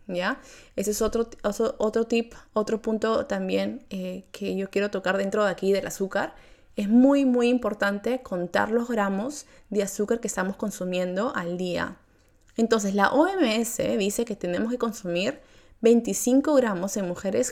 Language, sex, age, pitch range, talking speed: Spanish, female, 20-39, 195-245 Hz, 155 wpm